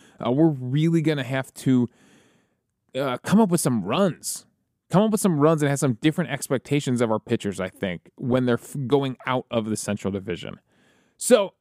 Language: English